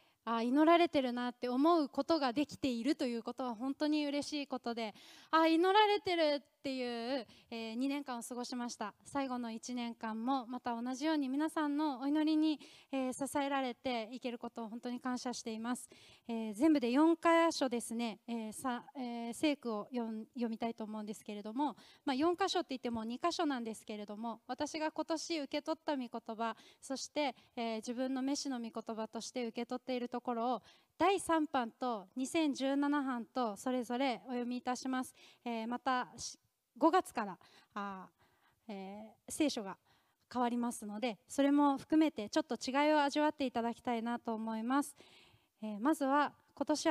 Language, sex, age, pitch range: Japanese, female, 20-39, 235-295 Hz